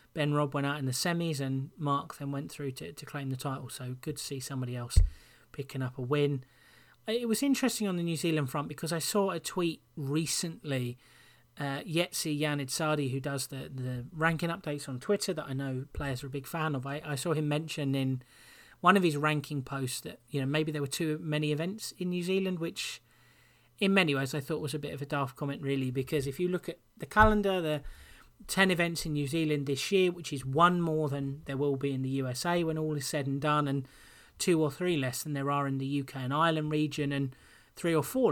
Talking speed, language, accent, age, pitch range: 230 wpm, English, British, 30-49, 135-165 Hz